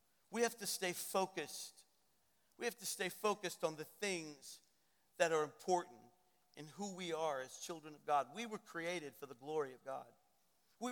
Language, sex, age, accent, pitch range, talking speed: English, male, 50-69, American, 150-195 Hz, 180 wpm